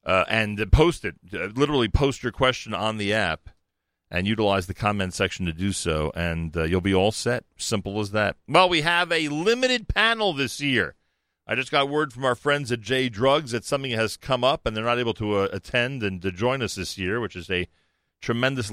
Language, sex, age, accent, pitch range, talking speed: English, male, 40-59, American, 95-120 Hz, 225 wpm